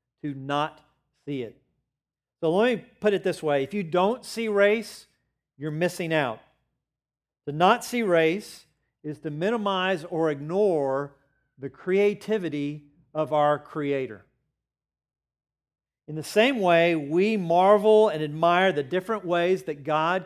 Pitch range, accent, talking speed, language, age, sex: 150-190 Hz, American, 135 wpm, English, 50-69, male